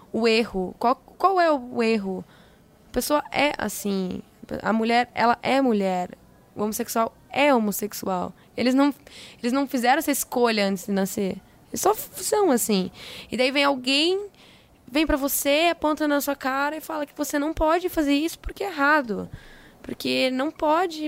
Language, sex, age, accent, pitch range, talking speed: Portuguese, female, 10-29, Brazilian, 210-290 Hz, 165 wpm